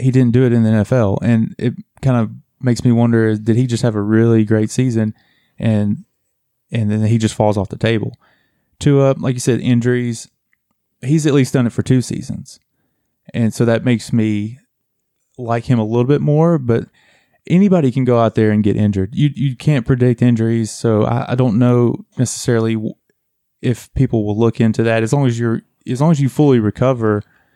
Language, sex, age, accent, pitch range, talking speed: English, male, 20-39, American, 110-125 Hz, 200 wpm